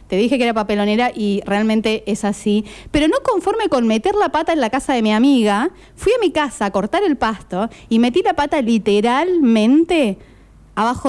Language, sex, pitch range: Spanish, female, 205-290 Hz